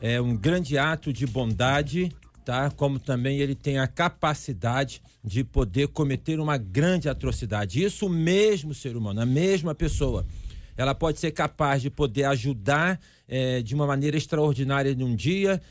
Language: Portuguese